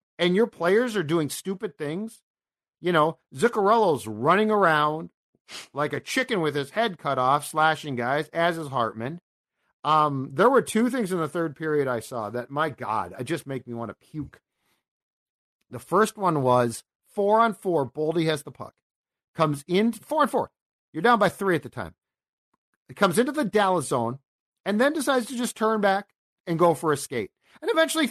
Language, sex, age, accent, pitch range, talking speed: English, male, 50-69, American, 140-205 Hz, 190 wpm